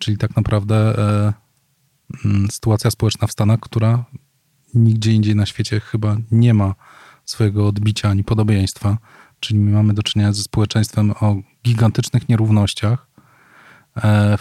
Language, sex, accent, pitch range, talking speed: Polish, male, native, 105-115 Hz, 135 wpm